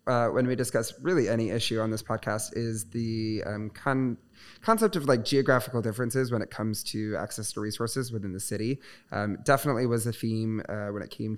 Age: 20-39